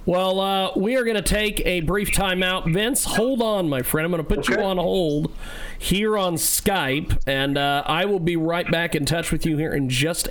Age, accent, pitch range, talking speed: 40-59, American, 145-190 Hz, 225 wpm